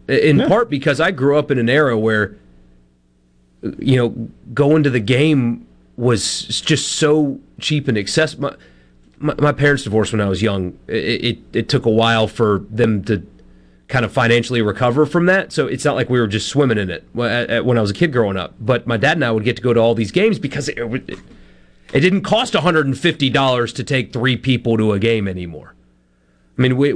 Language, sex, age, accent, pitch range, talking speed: English, male, 30-49, American, 110-155 Hz, 210 wpm